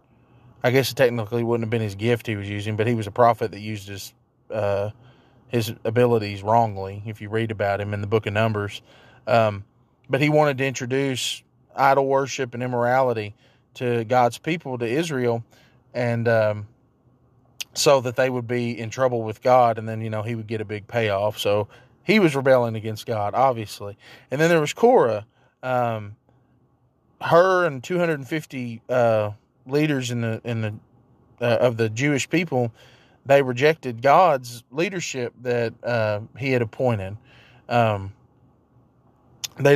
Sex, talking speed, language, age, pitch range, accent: male, 170 wpm, English, 20-39, 110-130 Hz, American